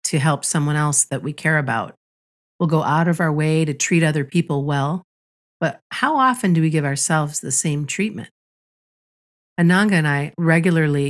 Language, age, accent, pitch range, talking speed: English, 40-59, American, 145-170 Hz, 180 wpm